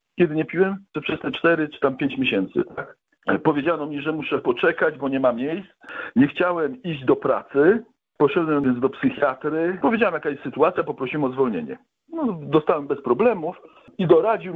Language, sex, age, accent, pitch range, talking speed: Polish, male, 50-69, native, 135-205 Hz, 170 wpm